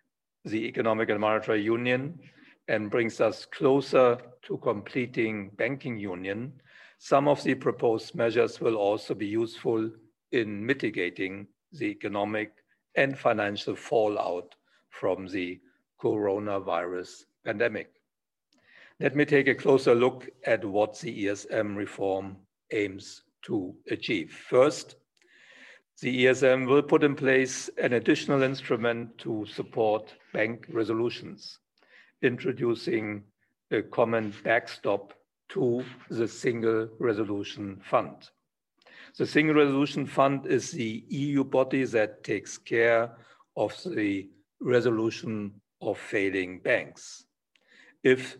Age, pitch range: 50-69, 105-130 Hz